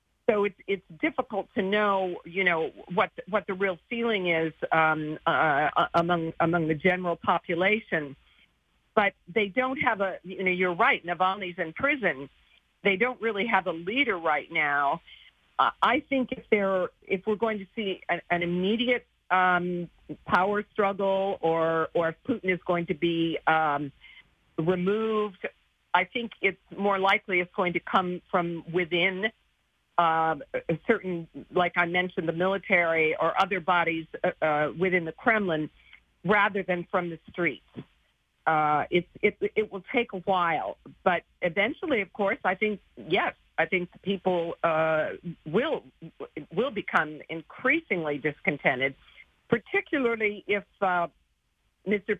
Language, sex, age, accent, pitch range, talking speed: English, female, 50-69, American, 170-205 Hz, 145 wpm